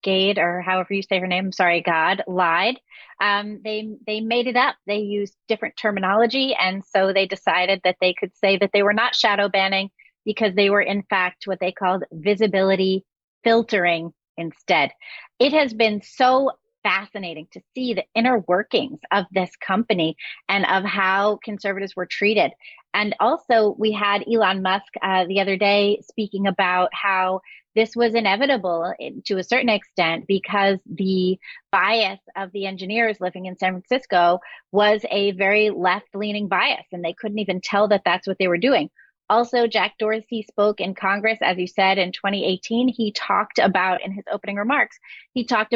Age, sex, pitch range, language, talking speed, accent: 30-49, female, 190-220 Hz, English, 170 wpm, American